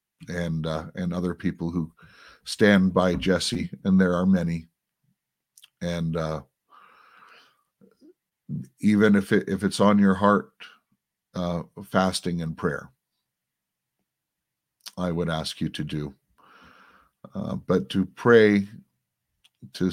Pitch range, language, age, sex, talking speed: 85-95 Hz, English, 50-69, male, 115 wpm